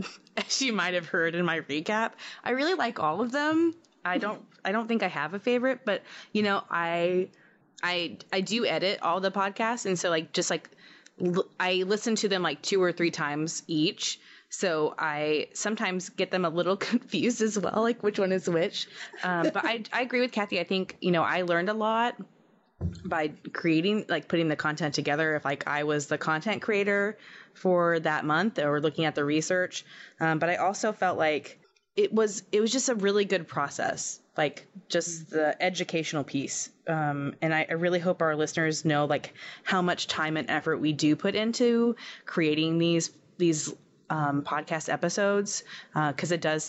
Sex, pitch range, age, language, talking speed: female, 160-210 Hz, 20-39, English, 195 wpm